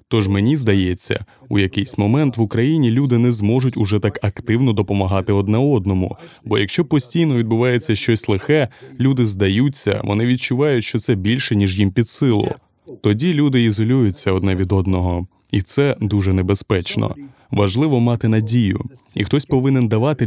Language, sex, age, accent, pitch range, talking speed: Ukrainian, male, 20-39, native, 100-125 Hz, 150 wpm